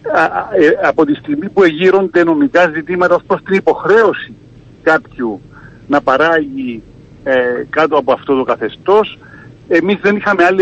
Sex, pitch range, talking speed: male, 145-230 Hz, 135 wpm